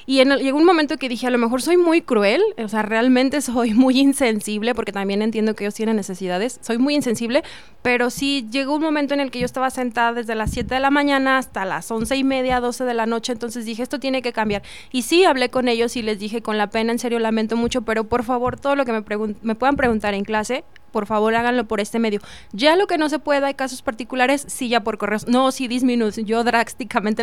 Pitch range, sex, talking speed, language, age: 215-260 Hz, female, 250 wpm, Spanish, 20-39